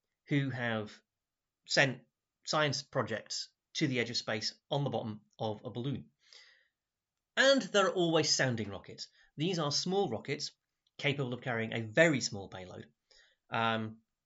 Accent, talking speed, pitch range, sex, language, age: British, 145 wpm, 110-155 Hz, male, English, 30-49